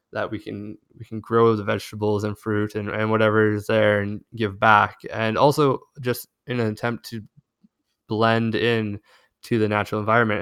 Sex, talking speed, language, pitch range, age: male, 180 wpm, English, 105-115 Hz, 20-39